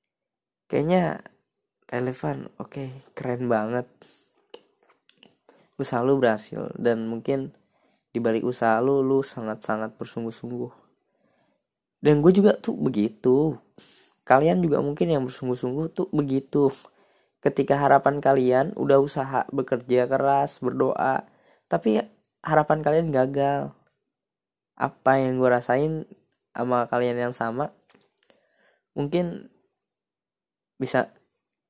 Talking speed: 100 wpm